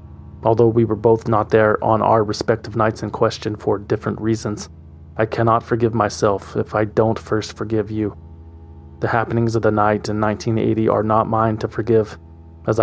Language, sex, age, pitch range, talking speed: English, male, 30-49, 105-115 Hz, 180 wpm